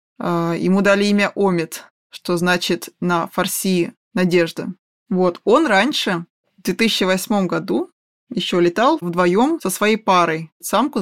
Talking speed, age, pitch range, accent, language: 120 wpm, 20-39, 180-220 Hz, native, Russian